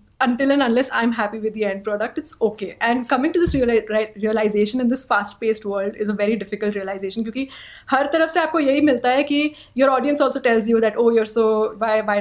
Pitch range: 210-255 Hz